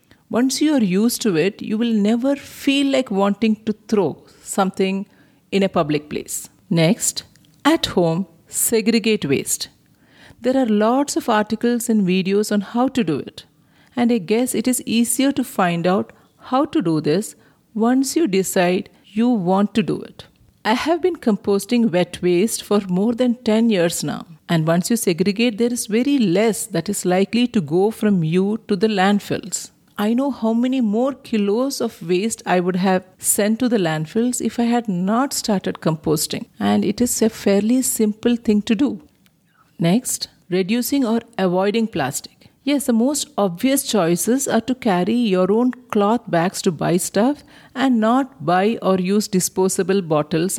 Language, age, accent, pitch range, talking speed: English, 50-69, Indian, 190-240 Hz, 170 wpm